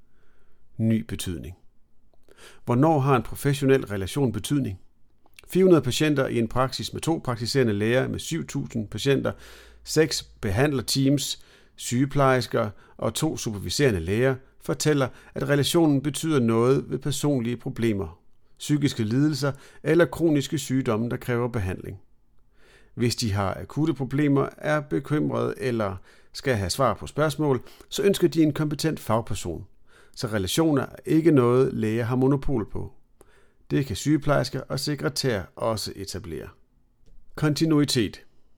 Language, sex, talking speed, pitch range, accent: Danish, male, 125 wpm, 110-145 Hz, native